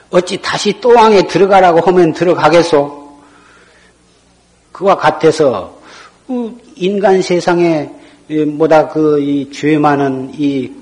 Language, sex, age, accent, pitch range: Korean, male, 50-69, native, 145-195 Hz